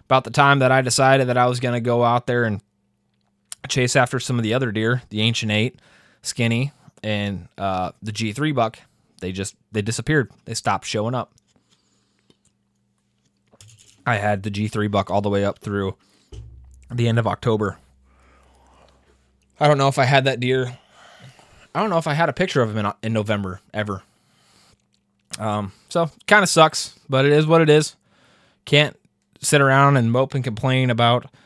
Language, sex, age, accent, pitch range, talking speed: English, male, 20-39, American, 105-135 Hz, 180 wpm